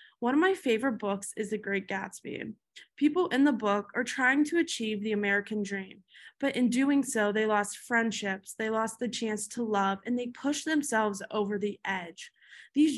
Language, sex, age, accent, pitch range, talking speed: English, female, 20-39, American, 205-260 Hz, 190 wpm